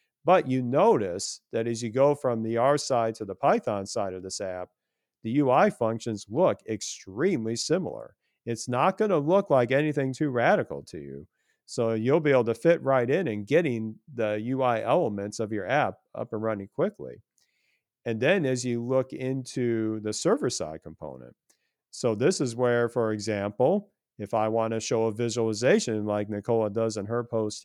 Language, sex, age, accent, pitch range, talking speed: English, male, 40-59, American, 110-125 Hz, 180 wpm